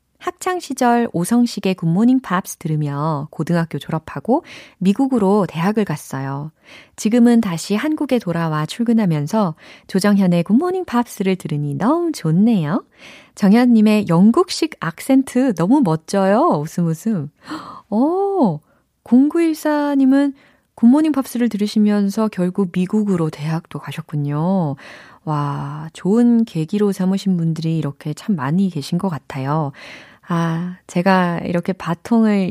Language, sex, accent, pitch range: Korean, female, native, 150-220 Hz